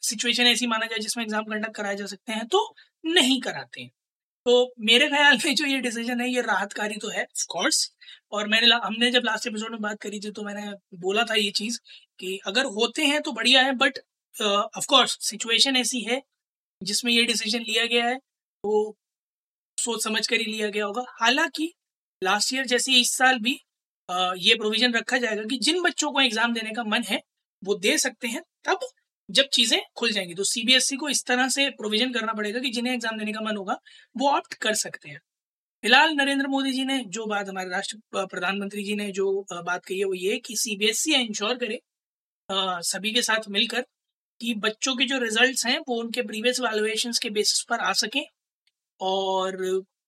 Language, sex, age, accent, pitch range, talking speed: Hindi, female, 20-39, native, 210-255 Hz, 185 wpm